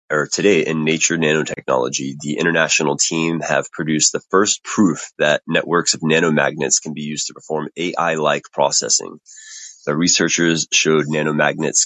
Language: English